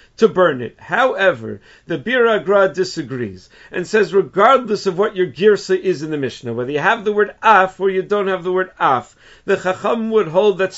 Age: 50-69